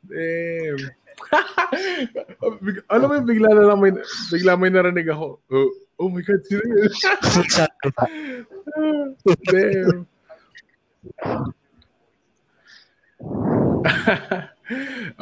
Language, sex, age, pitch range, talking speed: English, male, 20-39, 115-170 Hz, 70 wpm